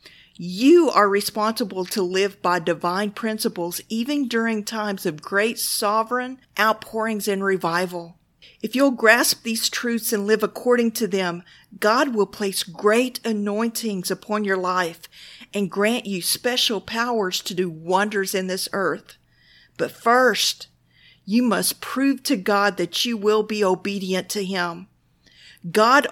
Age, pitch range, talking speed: 50-69, 180-225 Hz, 140 wpm